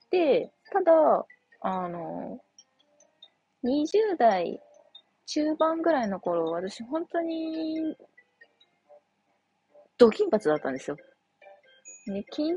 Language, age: Japanese, 20-39